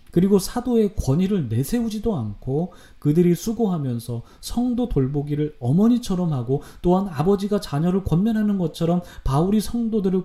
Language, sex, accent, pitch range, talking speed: English, male, Korean, 135-205 Hz, 105 wpm